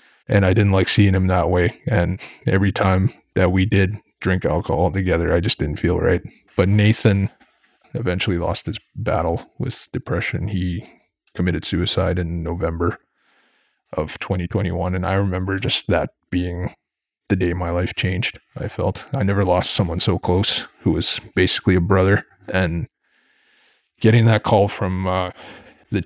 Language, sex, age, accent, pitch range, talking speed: English, male, 20-39, American, 90-100 Hz, 155 wpm